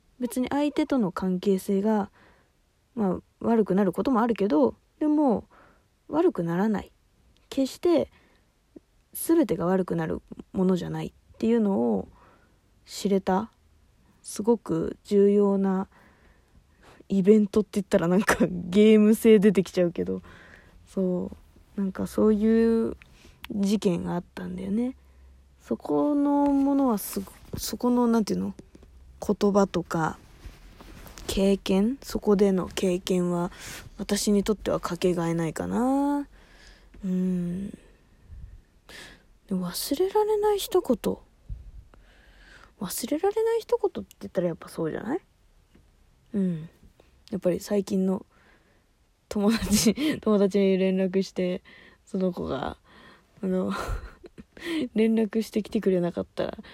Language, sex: Japanese, female